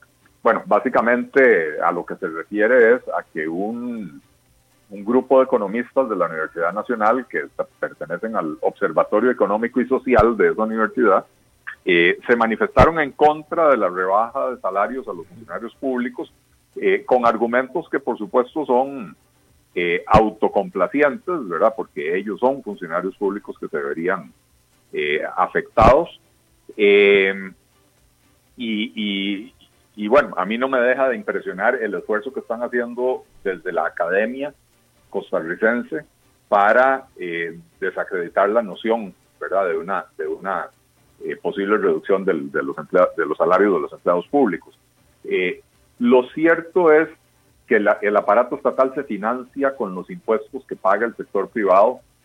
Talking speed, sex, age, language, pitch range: 140 wpm, male, 40-59, Spanish, 115-175 Hz